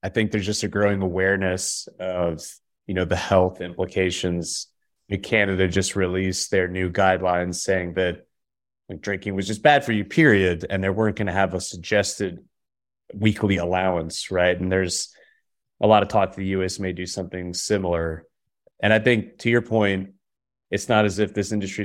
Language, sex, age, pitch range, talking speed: English, male, 20-39, 90-105 Hz, 180 wpm